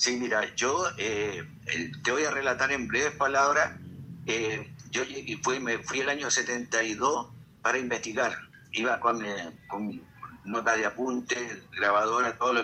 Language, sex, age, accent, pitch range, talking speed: Spanish, male, 60-79, Argentinian, 120-155 Hz, 150 wpm